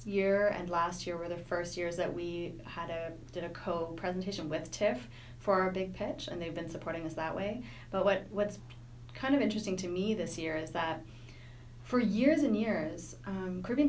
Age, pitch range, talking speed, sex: 30-49, 160-195 Hz, 195 wpm, female